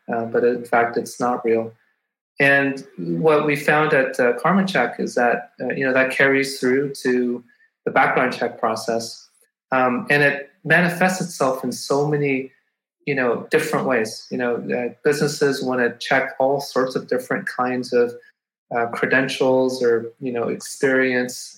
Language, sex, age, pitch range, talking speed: English, male, 30-49, 120-150 Hz, 160 wpm